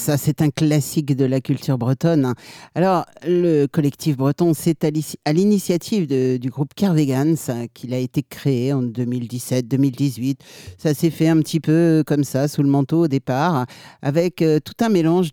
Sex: male